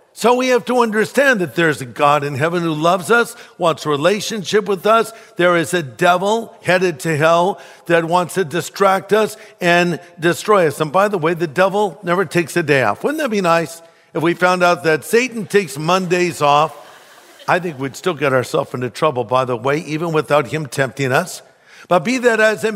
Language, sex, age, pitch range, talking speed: English, male, 60-79, 160-200 Hz, 205 wpm